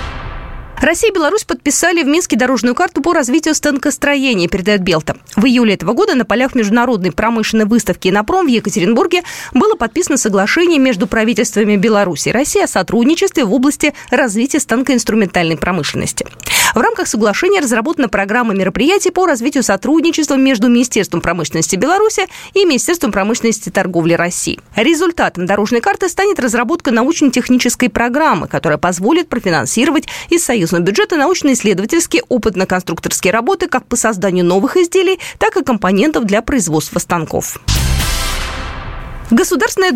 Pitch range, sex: 210-310 Hz, female